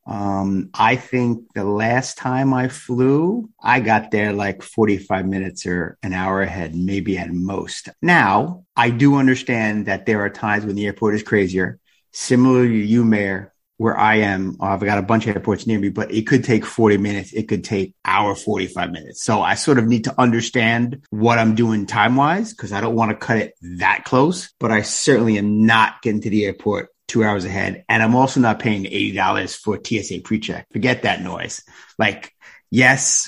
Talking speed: 195 wpm